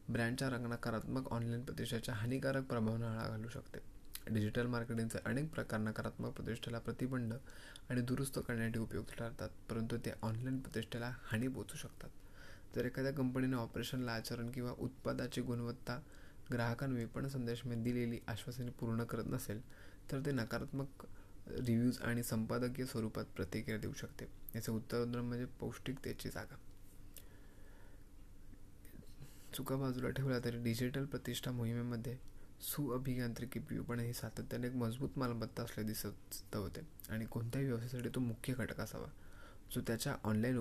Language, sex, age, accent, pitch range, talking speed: Marathi, male, 20-39, native, 105-125 Hz, 110 wpm